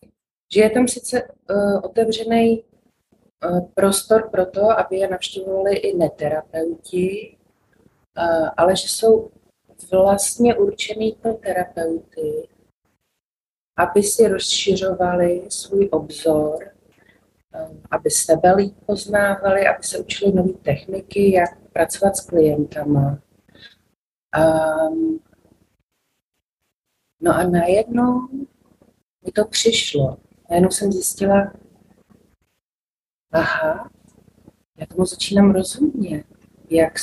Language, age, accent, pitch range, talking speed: Czech, 30-49, native, 155-215 Hz, 95 wpm